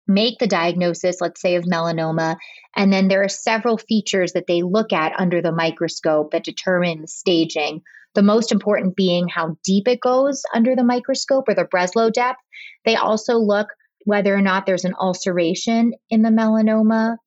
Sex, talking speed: female, 175 wpm